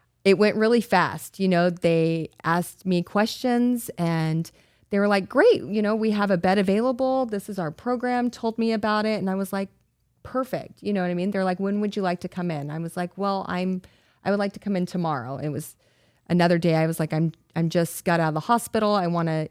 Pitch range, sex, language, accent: 165-205 Hz, female, English, American